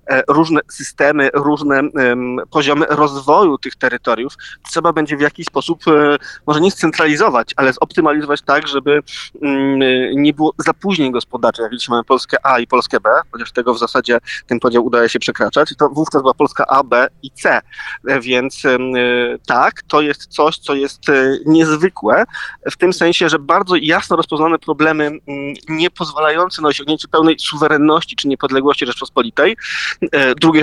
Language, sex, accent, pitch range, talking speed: Polish, male, native, 135-155 Hz, 160 wpm